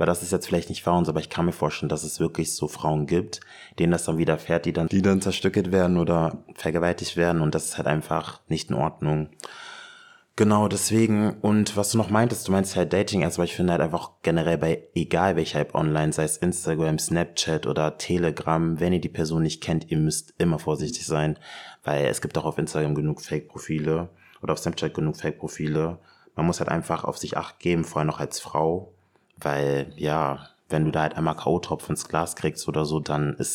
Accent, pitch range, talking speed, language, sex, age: German, 80-95 Hz, 215 wpm, German, male, 20-39